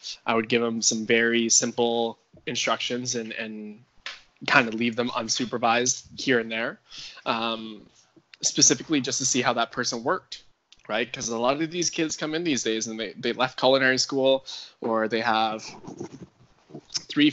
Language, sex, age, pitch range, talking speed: English, male, 10-29, 110-125 Hz, 165 wpm